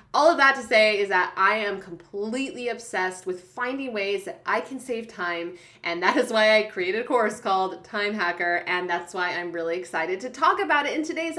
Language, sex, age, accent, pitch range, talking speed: English, female, 30-49, American, 190-265 Hz, 220 wpm